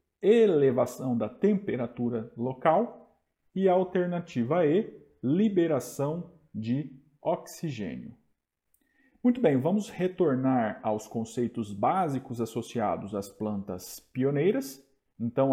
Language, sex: Portuguese, male